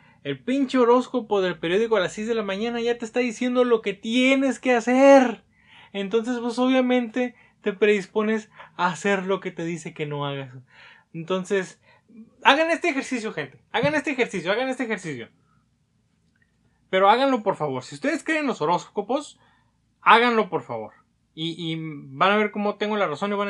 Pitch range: 165-250 Hz